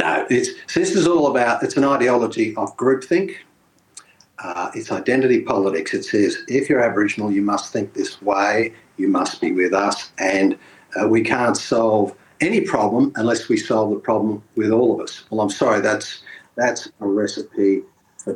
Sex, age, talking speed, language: male, 50-69, 175 wpm, English